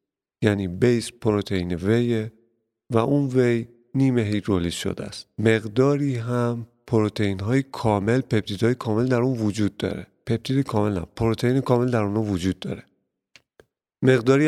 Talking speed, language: 135 wpm, Persian